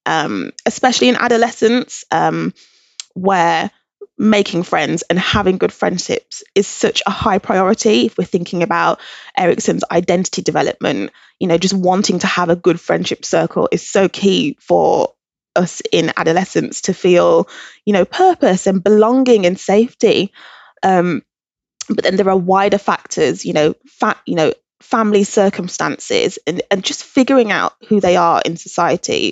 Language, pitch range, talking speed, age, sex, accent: English, 170-220 Hz, 150 wpm, 20-39, female, British